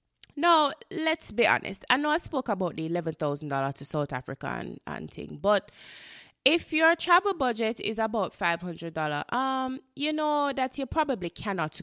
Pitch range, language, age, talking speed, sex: 170-250 Hz, English, 20-39, 160 wpm, female